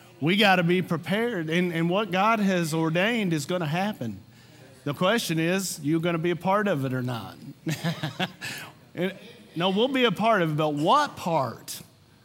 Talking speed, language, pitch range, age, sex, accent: 190 wpm, English, 140-175 Hz, 40-59, male, American